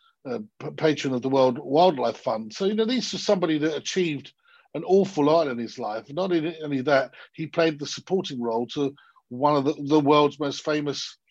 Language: English